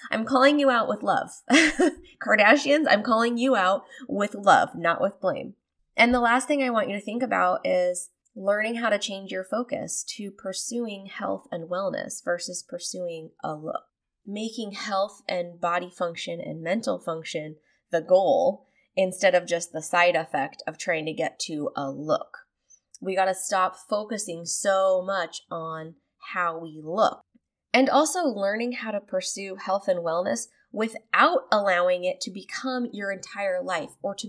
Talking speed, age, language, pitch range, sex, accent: 165 wpm, 20-39, English, 175-235 Hz, female, American